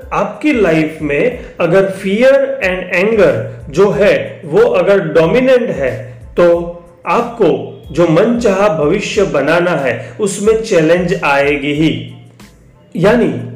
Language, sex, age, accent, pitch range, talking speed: Hindi, male, 30-49, native, 150-210 Hz, 110 wpm